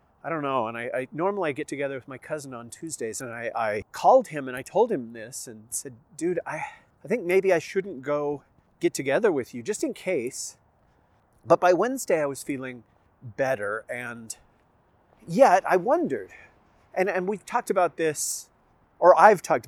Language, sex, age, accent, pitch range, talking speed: English, male, 40-59, American, 125-170 Hz, 190 wpm